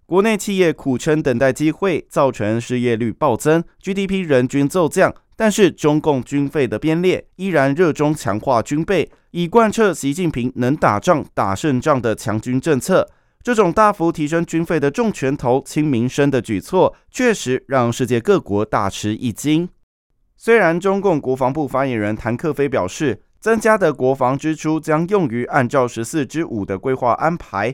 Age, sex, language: 20-39, male, Chinese